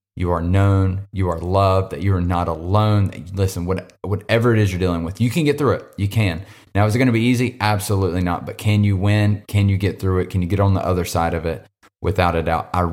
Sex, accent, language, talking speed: male, American, English, 260 wpm